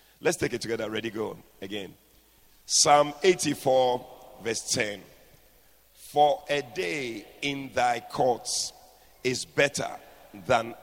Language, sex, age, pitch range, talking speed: English, male, 50-69, 110-145 Hz, 110 wpm